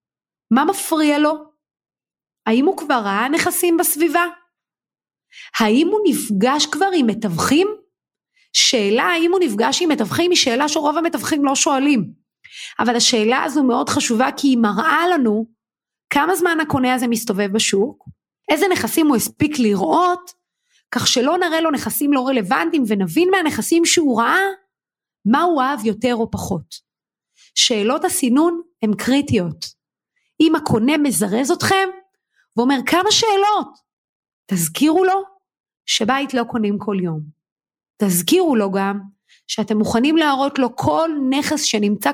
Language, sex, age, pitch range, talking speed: Hebrew, female, 30-49, 225-330 Hz, 130 wpm